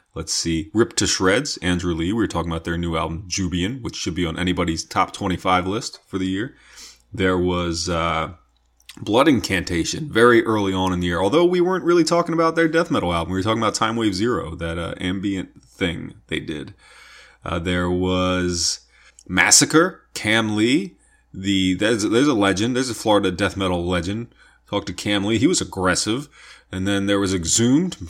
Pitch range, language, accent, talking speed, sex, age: 90-145 Hz, English, American, 190 wpm, male, 30-49